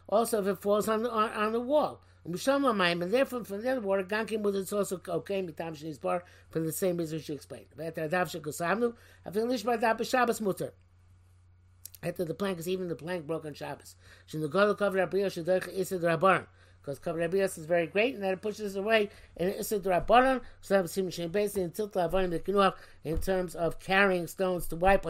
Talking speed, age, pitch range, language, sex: 125 wpm, 50-69, 140-195 Hz, English, male